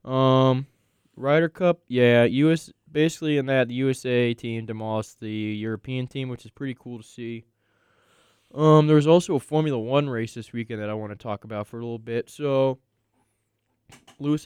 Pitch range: 110-135 Hz